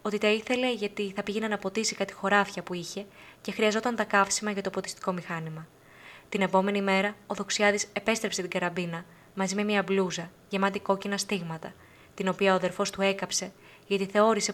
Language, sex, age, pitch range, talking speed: Greek, female, 20-39, 180-210 Hz, 180 wpm